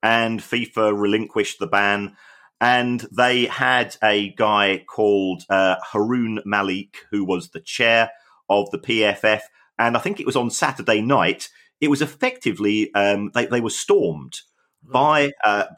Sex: male